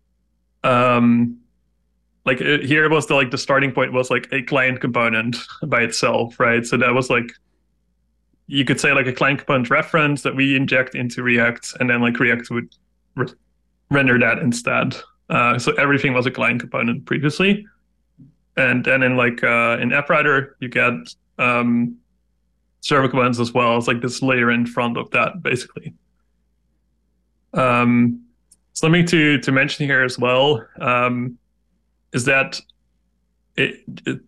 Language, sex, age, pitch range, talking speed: English, male, 20-39, 120-140 Hz, 160 wpm